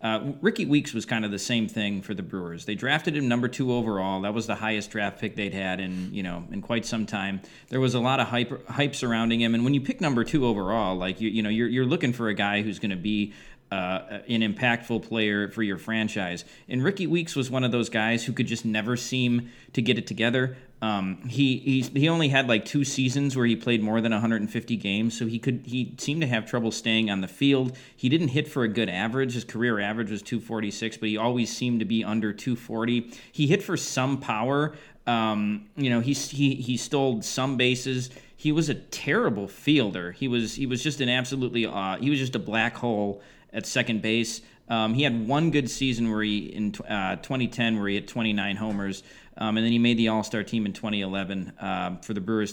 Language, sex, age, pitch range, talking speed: English, male, 30-49, 105-130 Hz, 230 wpm